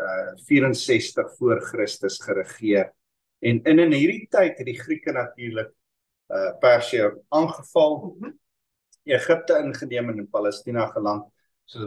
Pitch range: 115-185 Hz